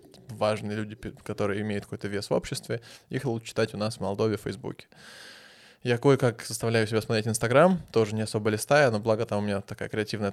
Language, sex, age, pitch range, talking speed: Russian, male, 20-39, 105-120 Hz, 200 wpm